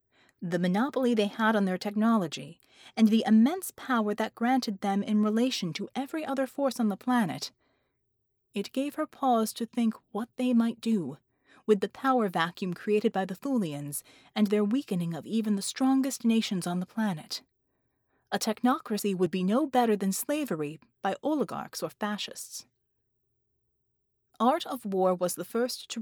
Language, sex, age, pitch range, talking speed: English, female, 30-49, 145-230 Hz, 165 wpm